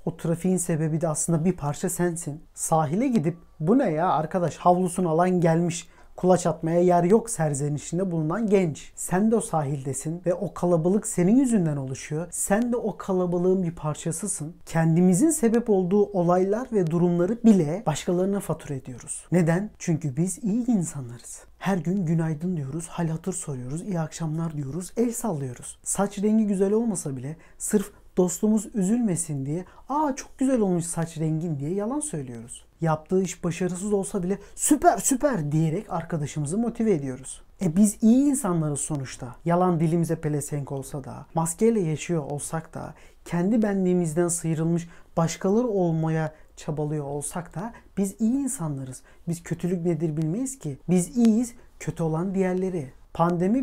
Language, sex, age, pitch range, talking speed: Turkish, male, 40-59, 155-200 Hz, 150 wpm